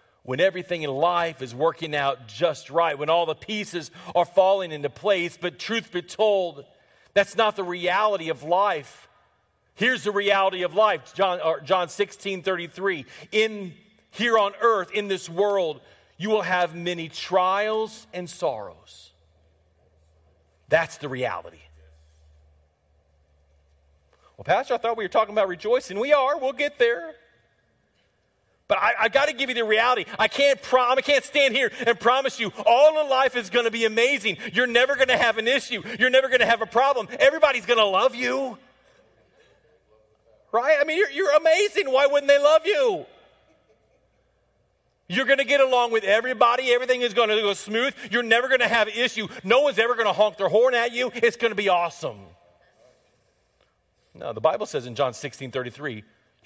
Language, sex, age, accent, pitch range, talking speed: English, male, 40-59, American, 165-245 Hz, 175 wpm